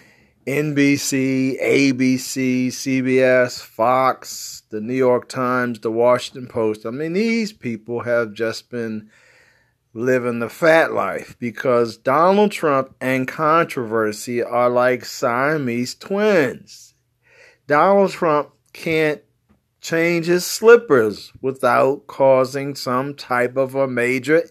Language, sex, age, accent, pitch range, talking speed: English, male, 40-59, American, 120-160 Hz, 110 wpm